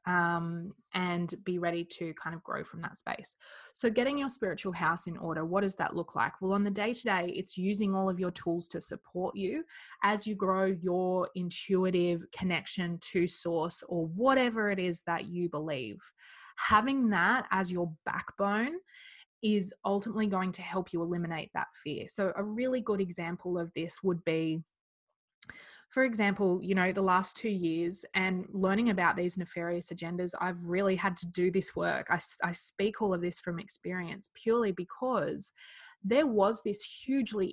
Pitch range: 175-210 Hz